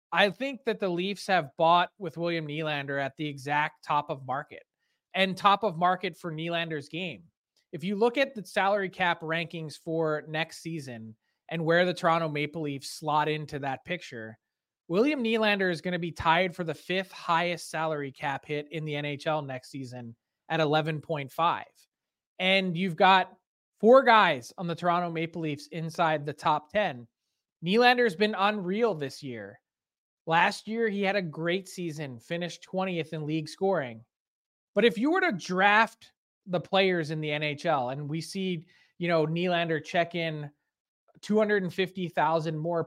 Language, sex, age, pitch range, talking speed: English, male, 20-39, 155-200 Hz, 170 wpm